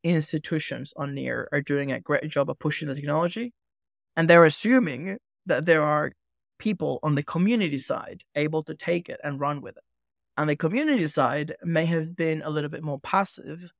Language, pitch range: English, 145-180 Hz